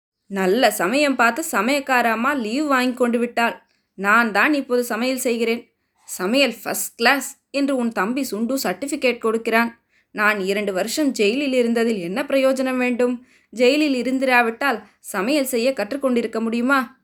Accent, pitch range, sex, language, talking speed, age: native, 230-275 Hz, female, Tamil, 125 wpm, 20-39